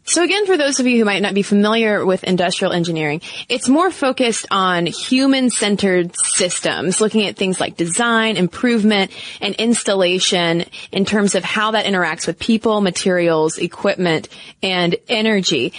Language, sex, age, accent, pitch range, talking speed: English, female, 20-39, American, 180-235 Hz, 150 wpm